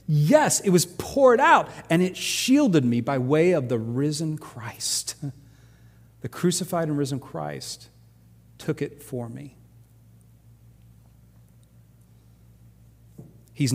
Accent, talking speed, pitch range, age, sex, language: American, 110 wpm, 115-125 Hz, 40-59, male, English